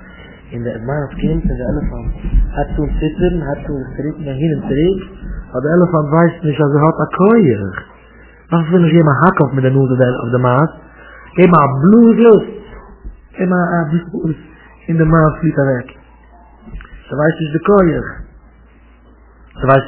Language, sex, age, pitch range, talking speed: English, male, 50-69, 110-160 Hz, 195 wpm